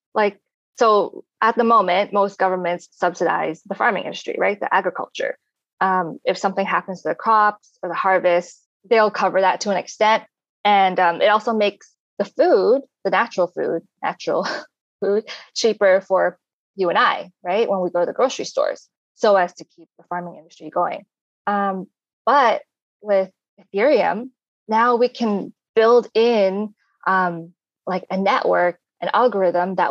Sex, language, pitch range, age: female, English, 185-225 Hz, 20-39